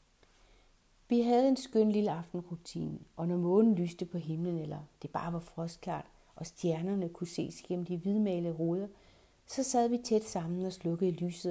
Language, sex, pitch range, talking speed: Danish, female, 165-195 Hz, 170 wpm